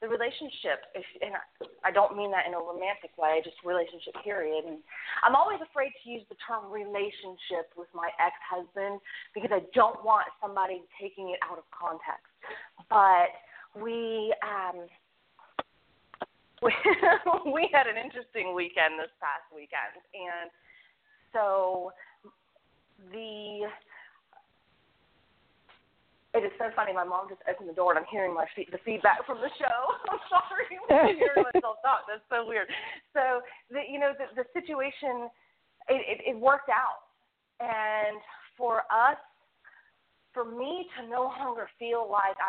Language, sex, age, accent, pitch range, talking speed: English, female, 30-49, American, 185-255 Hz, 140 wpm